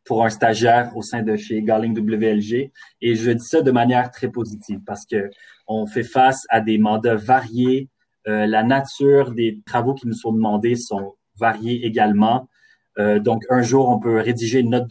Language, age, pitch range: French, 30-49, 110-125 Hz